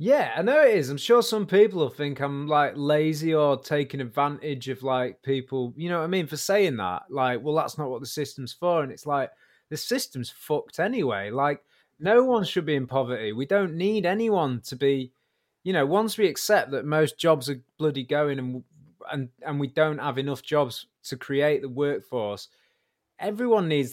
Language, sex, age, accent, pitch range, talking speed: English, male, 20-39, British, 135-185 Hz, 205 wpm